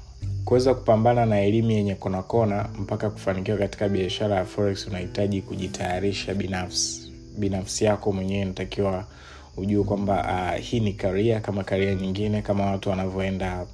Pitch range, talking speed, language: 95-110 Hz, 140 wpm, Swahili